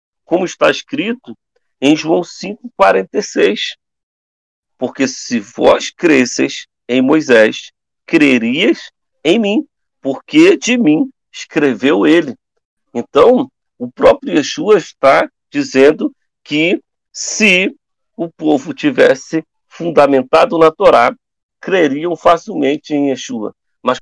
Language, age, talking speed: Portuguese, 40-59, 95 wpm